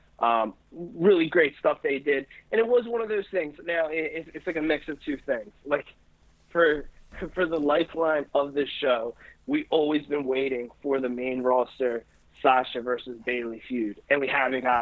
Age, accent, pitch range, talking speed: 20-39, American, 130-165 Hz, 185 wpm